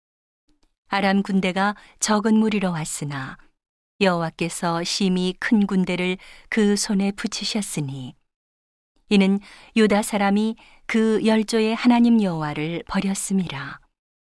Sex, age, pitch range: female, 40-59, 180-210 Hz